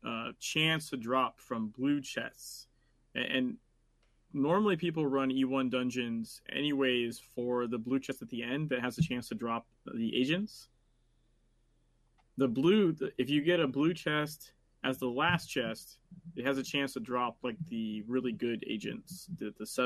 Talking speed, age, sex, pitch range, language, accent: 170 wpm, 20-39, male, 120-160 Hz, English, American